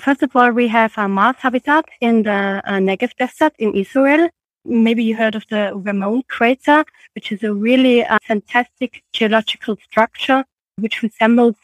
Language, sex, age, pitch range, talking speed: English, female, 30-49, 205-255 Hz, 165 wpm